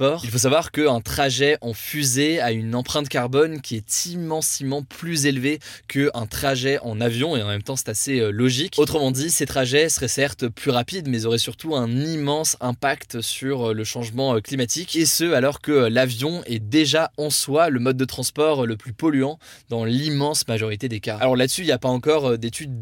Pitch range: 120-145 Hz